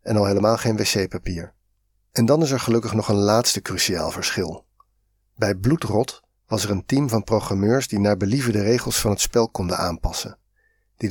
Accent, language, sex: Dutch, Dutch, male